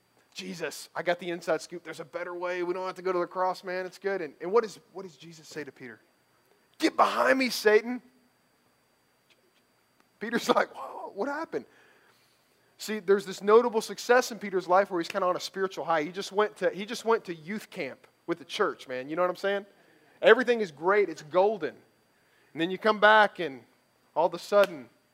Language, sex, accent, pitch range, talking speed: English, male, American, 150-195 Hz, 210 wpm